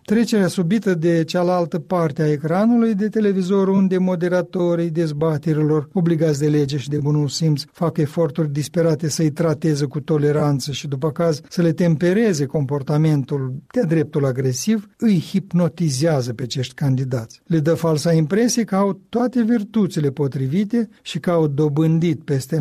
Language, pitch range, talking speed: Romanian, 150-185 Hz, 145 wpm